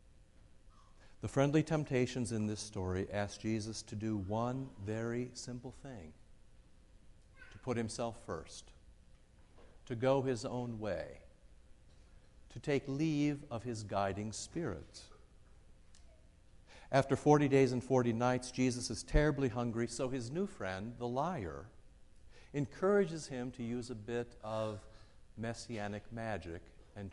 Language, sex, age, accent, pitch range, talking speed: English, male, 50-69, American, 90-120 Hz, 125 wpm